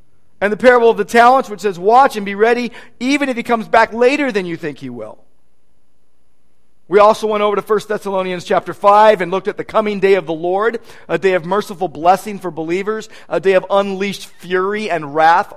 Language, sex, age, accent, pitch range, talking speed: English, male, 40-59, American, 160-225 Hz, 210 wpm